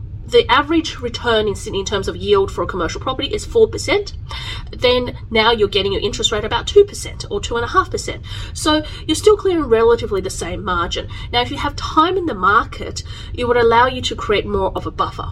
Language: English